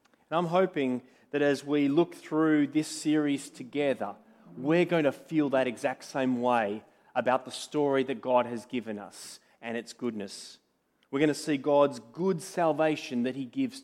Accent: Australian